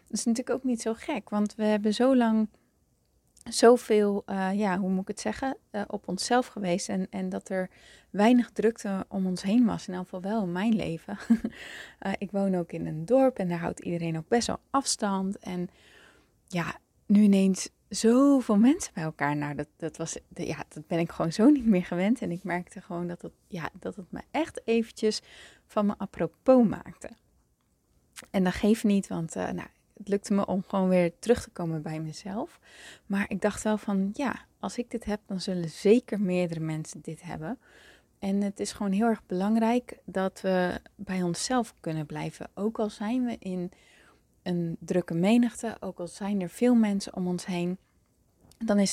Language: Dutch